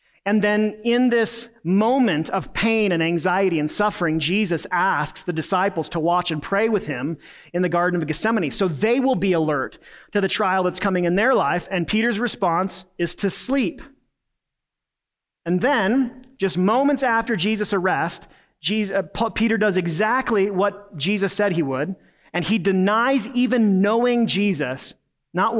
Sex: male